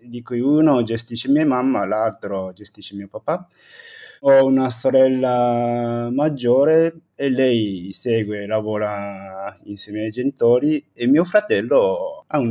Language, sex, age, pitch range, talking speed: Italian, male, 20-39, 110-130 Hz, 130 wpm